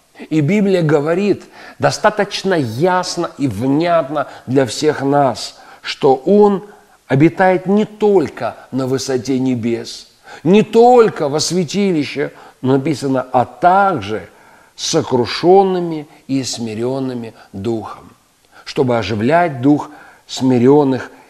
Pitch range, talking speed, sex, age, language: 130-185 Hz, 95 wpm, male, 50-69, Russian